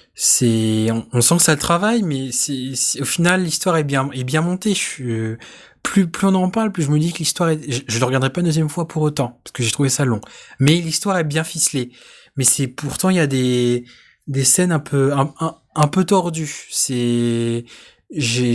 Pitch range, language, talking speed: 125-165 Hz, French, 225 wpm